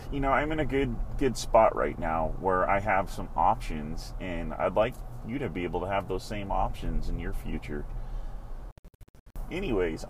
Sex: male